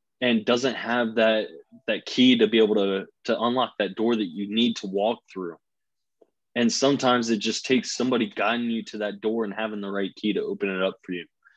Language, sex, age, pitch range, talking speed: English, male, 20-39, 100-110 Hz, 220 wpm